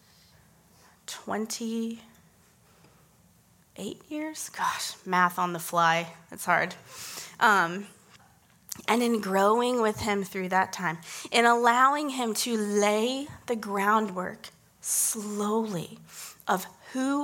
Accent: American